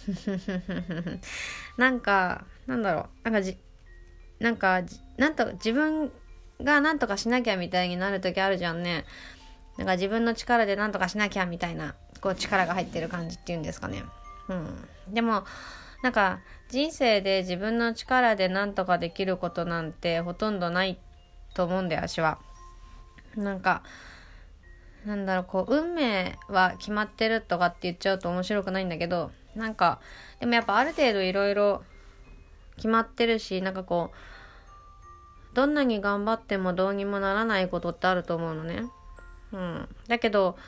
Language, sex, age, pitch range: Japanese, female, 20-39, 175-220 Hz